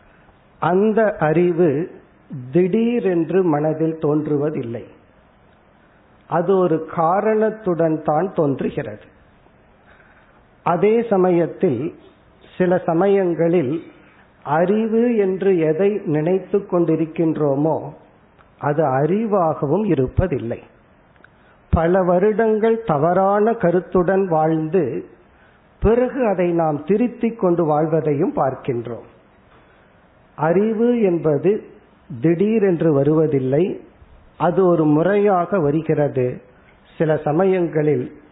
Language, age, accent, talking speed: Tamil, 50-69, native, 65 wpm